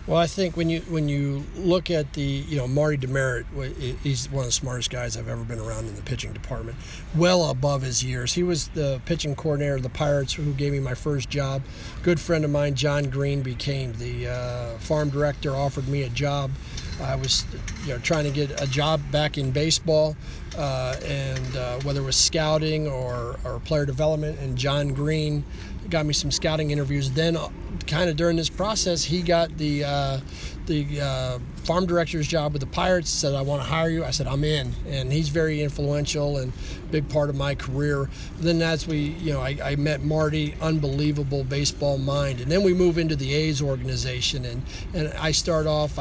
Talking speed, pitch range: 200 wpm, 130-155 Hz